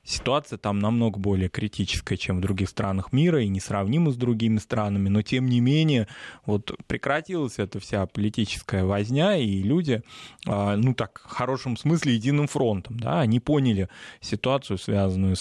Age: 20-39